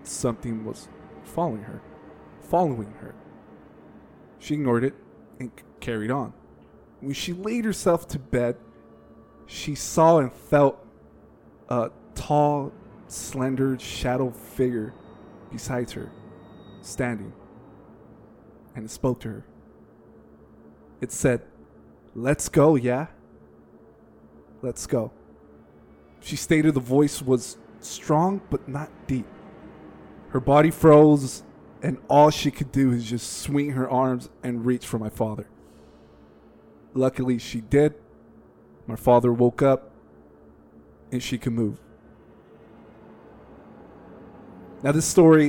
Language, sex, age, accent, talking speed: English, male, 20-39, American, 110 wpm